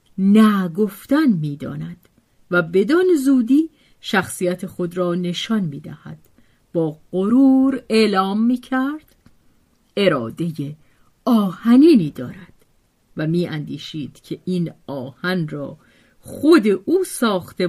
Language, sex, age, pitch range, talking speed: Persian, female, 50-69, 160-220 Hz, 90 wpm